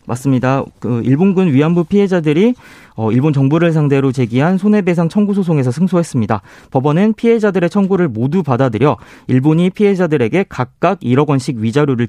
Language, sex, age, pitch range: Korean, male, 40-59, 130-195 Hz